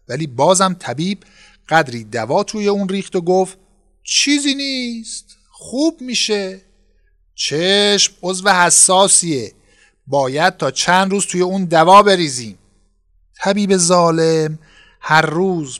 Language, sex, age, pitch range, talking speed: Persian, male, 50-69, 135-195 Hz, 115 wpm